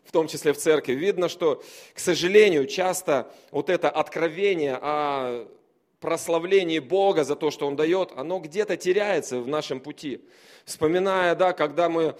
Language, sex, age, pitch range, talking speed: Russian, male, 30-49, 160-200 Hz, 155 wpm